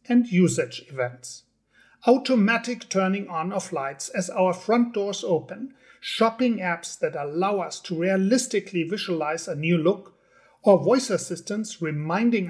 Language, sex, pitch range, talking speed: English, male, 165-215 Hz, 135 wpm